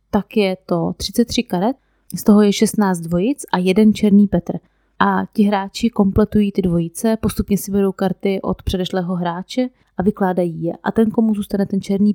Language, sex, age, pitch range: Czech, female, 20-39, 180-215 Hz